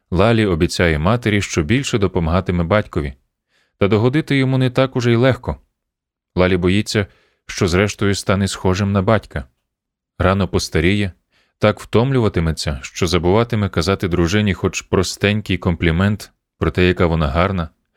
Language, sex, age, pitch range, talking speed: Ukrainian, male, 30-49, 80-110 Hz, 130 wpm